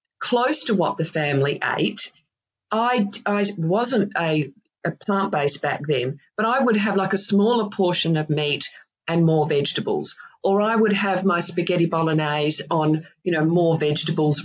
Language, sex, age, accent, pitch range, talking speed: English, female, 40-59, Australian, 155-195 Hz, 160 wpm